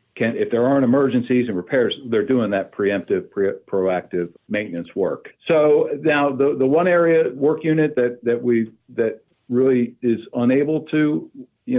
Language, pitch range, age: English, 105-130 Hz, 50-69